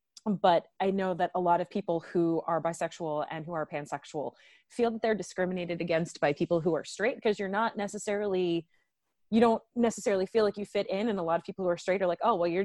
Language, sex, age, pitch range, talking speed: English, female, 20-39, 165-200 Hz, 235 wpm